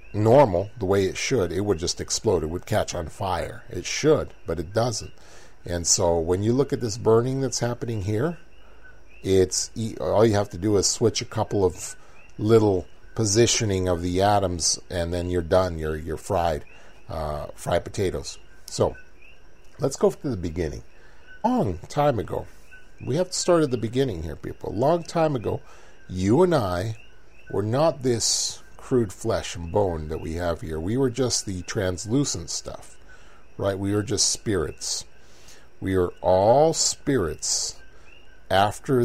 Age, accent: 40-59, American